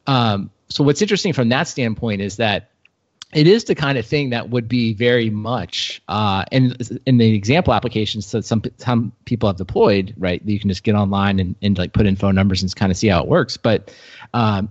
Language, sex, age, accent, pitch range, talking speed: English, male, 30-49, American, 100-120 Hz, 220 wpm